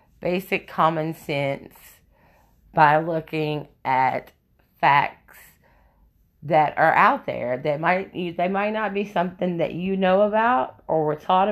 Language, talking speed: English, 130 wpm